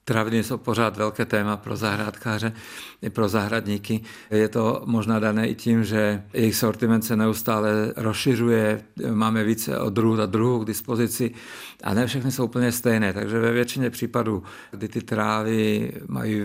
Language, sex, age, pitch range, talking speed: Czech, male, 50-69, 105-115 Hz, 155 wpm